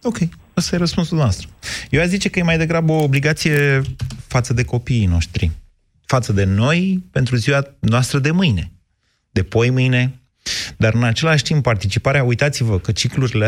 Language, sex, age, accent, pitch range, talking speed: Romanian, male, 30-49, native, 100-130 Hz, 165 wpm